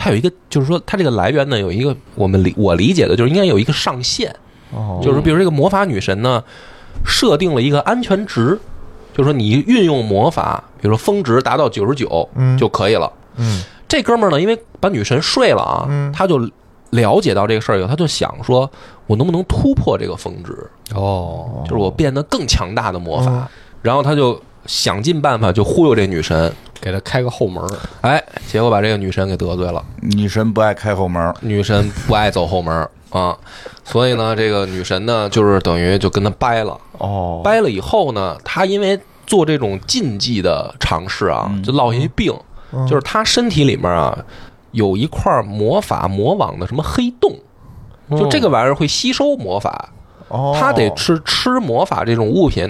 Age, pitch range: 20-39, 100-145 Hz